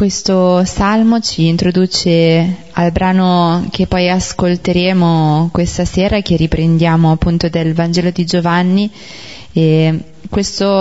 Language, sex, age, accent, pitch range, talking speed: Italian, female, 20-39, native, 165-185 Hz, 110 wpm